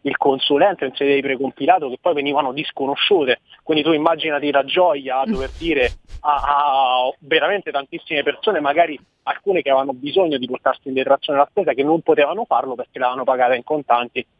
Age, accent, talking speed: 30-49, native, 180 wpm